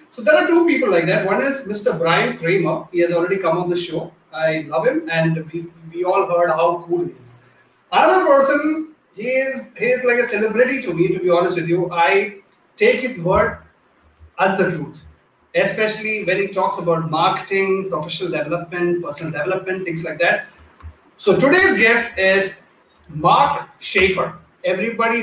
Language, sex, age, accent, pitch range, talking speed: English, male, 30-49, Indian, 170-215 Hz, 175 wpm